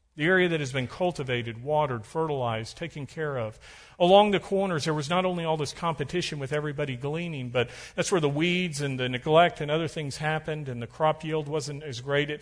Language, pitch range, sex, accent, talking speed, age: English, 130-165 Hz, male, American, 215 wpm, 40-59